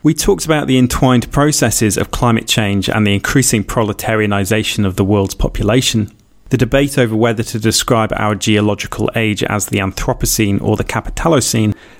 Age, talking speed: 30-49, 160 wpm